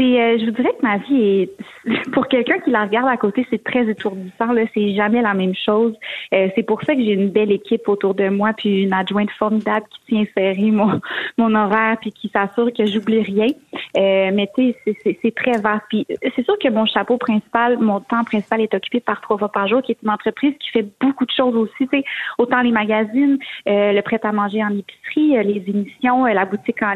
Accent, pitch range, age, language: Canadian, 205-250 Hz, 30-49, French